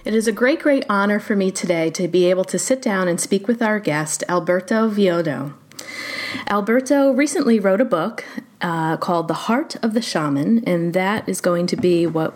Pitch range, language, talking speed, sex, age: 170-220 Hz, English, 200 wpm, female, 30-49